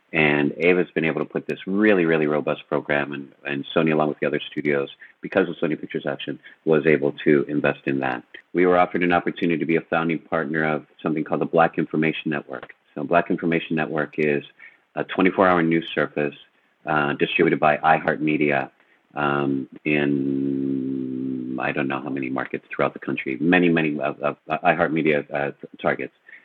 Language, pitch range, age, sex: English, 70-85 Hz, 40-59, male